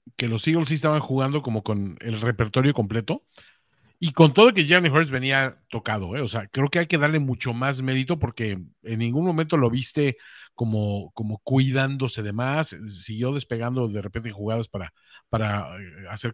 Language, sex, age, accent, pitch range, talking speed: Spanish, male, 50-69, Mexican, 115-160 Hz, 180 wpm